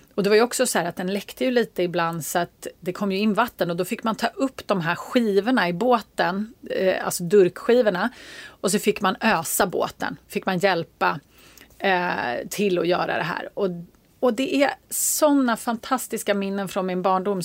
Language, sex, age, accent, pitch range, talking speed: Swedish, female, 30-49, native, 185-250 Hz, 200 wpm